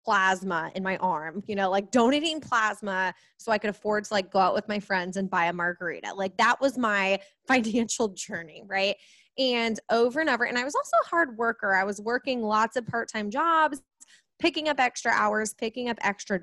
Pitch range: 200-265 Hz